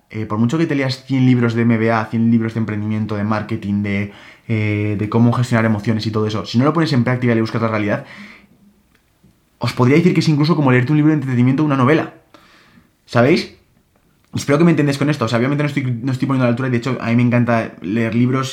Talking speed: 250 wpm